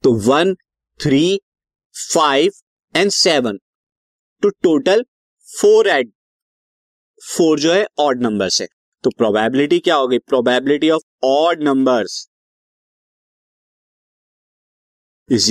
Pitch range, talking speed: 135-185 Hz, 100 wpm